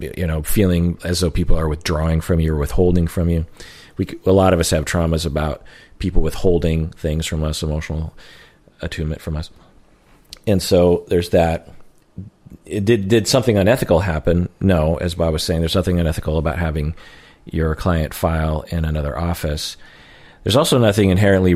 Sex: male